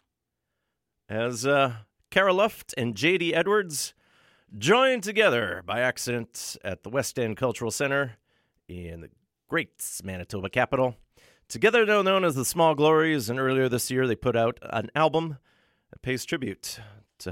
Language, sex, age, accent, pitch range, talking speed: English, male, 40-59, American, 100-145 Hz, 145 wpm